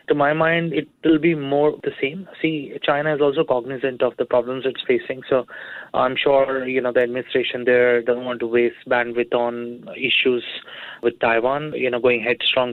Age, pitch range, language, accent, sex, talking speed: 20-39, 125-145 Hz, English, Indian, male, 190 wpm